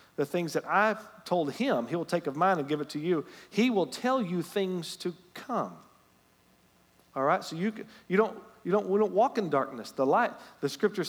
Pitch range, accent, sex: 140-185 Hz, American, male